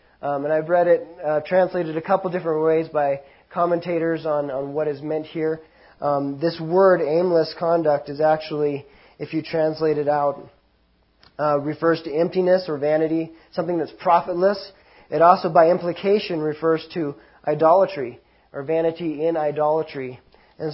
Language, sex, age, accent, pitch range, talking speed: English, male, 30-49, American, 145-165 Hz, 150 wpm